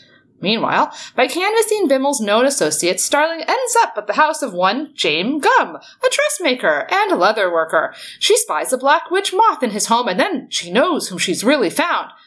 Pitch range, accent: 215-330 Hz, American